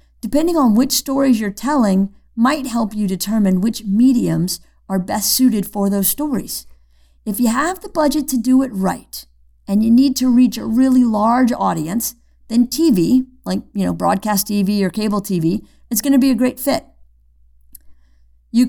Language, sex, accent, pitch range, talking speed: English, female, American, 195-255 Hz, 170 wpm